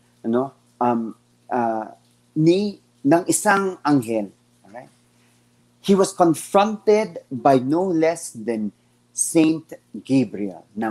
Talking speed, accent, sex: 110 wpm, native, male